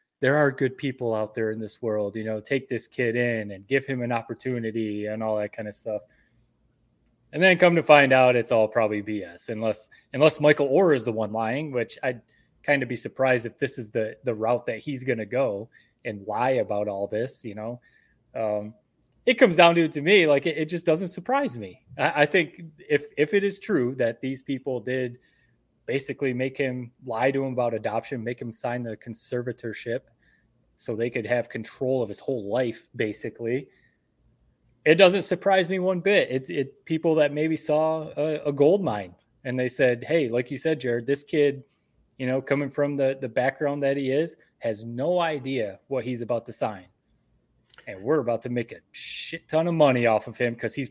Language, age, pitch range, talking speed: English, 20-39, 115-150 Hz, 210 wpm